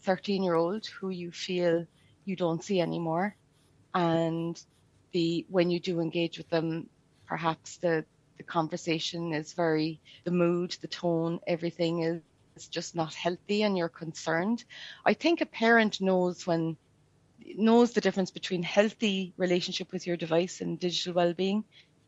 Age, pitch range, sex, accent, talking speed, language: 30-49, 165-190 Hz, female, Irish, 145 wpm, English